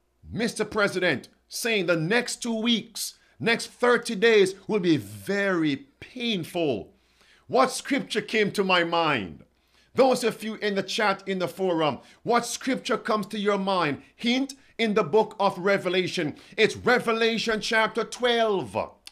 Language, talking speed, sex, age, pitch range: English, 140 wpm, male, 50-69, 175-225 Hz